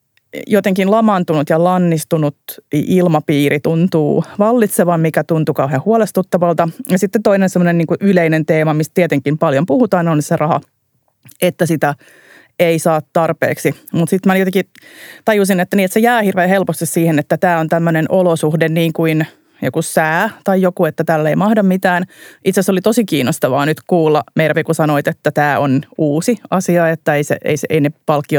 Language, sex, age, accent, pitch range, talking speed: Finnish, female, 30-49, native, 155-185 Hz, 175 wpm